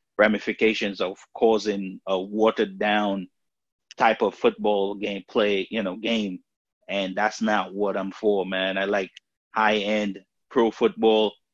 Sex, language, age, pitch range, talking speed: male, English, 30-49, 100-115 Hz, 140 wpm